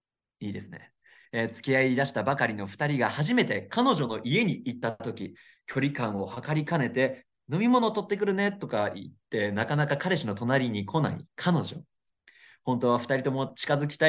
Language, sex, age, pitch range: Japanese, male, 20-39, 120-185 Hz